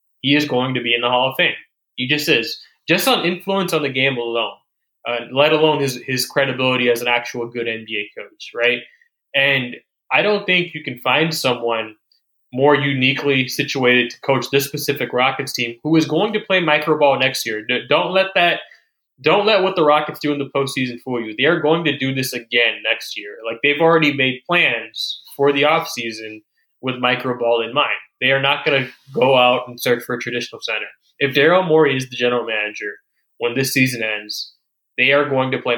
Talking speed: 205 wpm